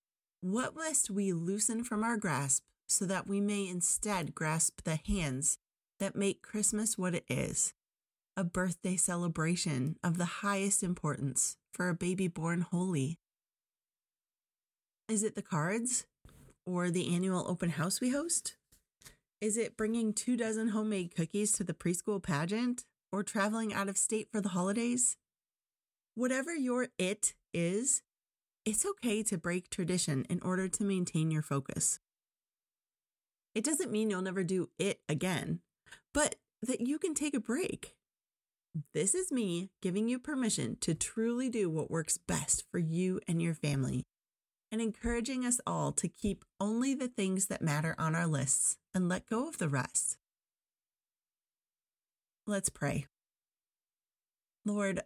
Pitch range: 175-220 Hz